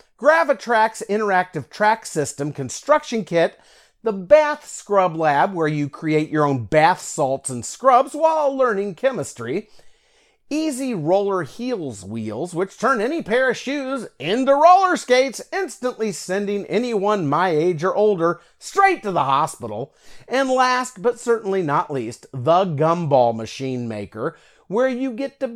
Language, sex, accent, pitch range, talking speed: English, male, American, 170-275 Hz, 140 wpm